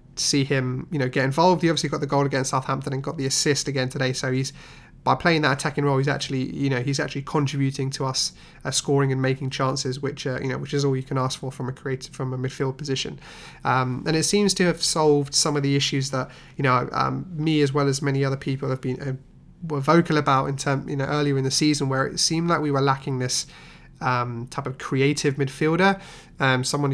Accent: British